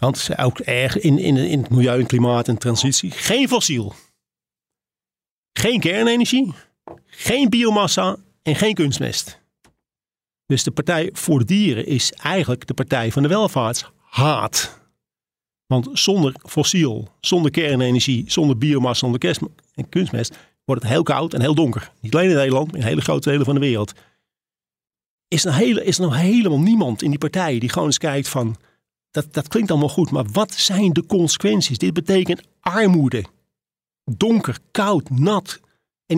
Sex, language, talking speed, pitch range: male, Dutch, 165 wpm, 125-185 Hz